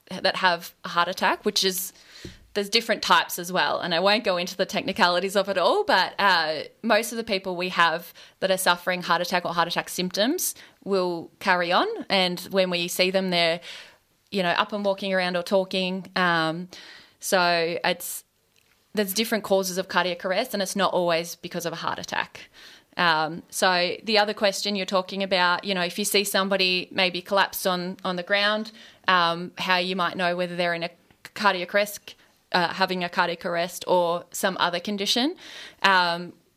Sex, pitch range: female, 175-205 Hz